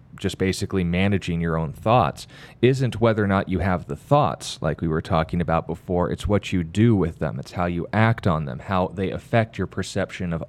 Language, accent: English, American